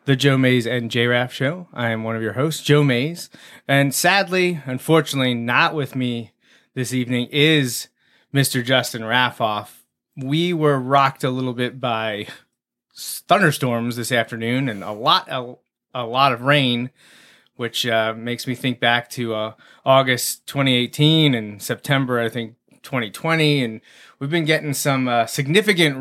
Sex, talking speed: male, 150 wpm